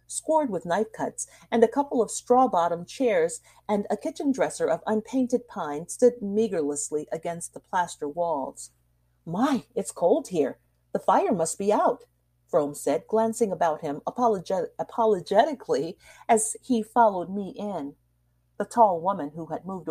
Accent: American